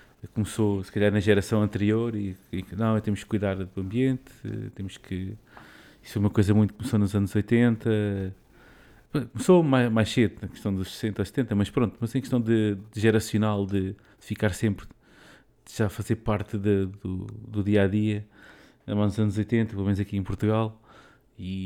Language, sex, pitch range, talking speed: Portuguese, male, 100-115 Hz, 180 wpm